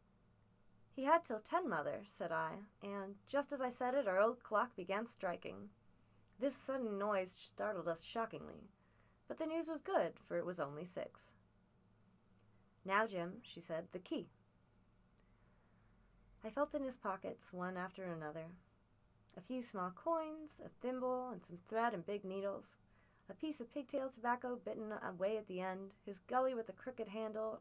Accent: American